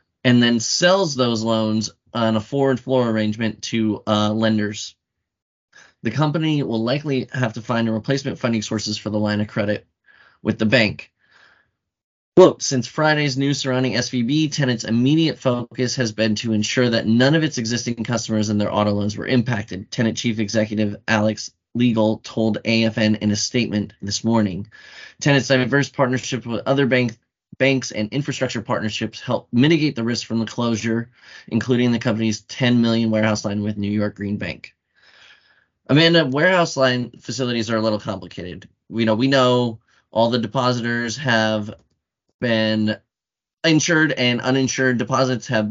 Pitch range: 110-130 Hz